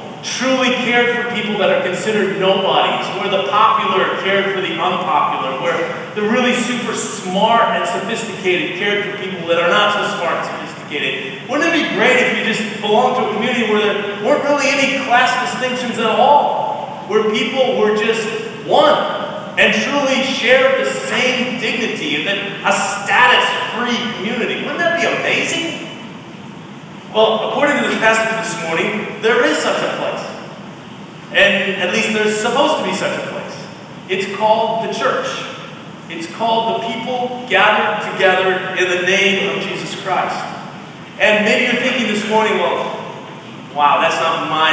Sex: male